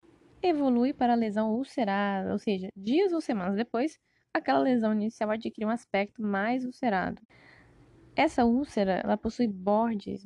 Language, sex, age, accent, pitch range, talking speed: Portuguese, female, 10-29, Brazilian, 205-255 Hz, 140 wpm